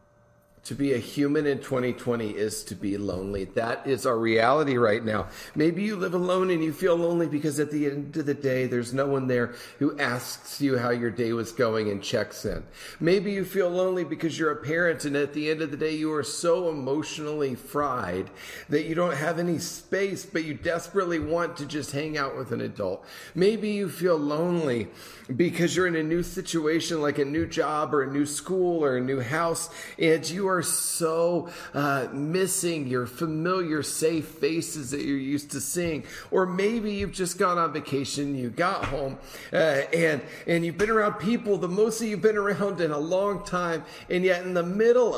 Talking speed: 200 wpm